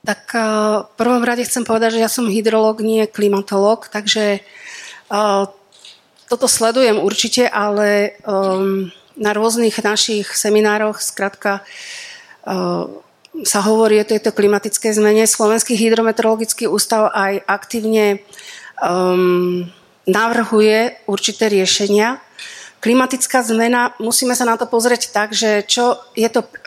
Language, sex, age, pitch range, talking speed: Slovak, female, 40-59, 200-230 Hz, 115 wpm